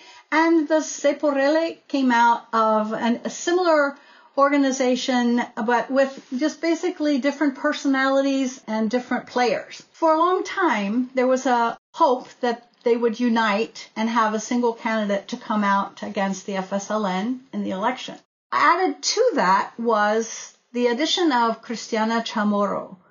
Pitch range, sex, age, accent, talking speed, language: 225-285 Hz, female, 50-69, American, 140 wpm, English